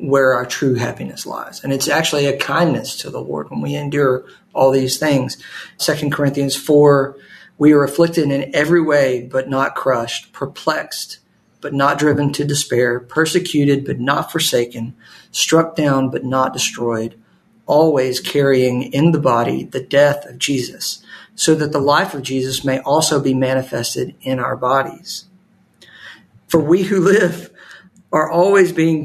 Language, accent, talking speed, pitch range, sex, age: English, American, 155 wpm, 130-160 Hz, male, 50-69